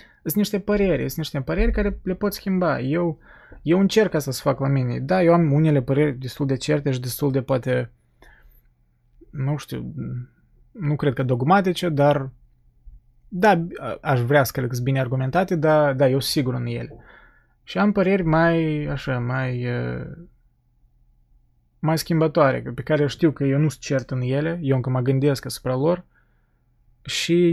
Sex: male